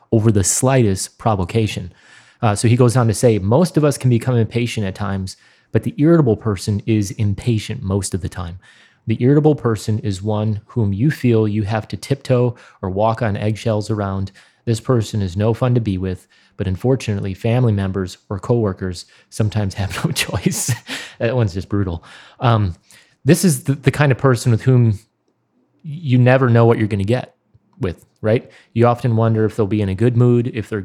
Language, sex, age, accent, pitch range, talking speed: English, male, 30-49, American, 105-125 Hz, 195 wpm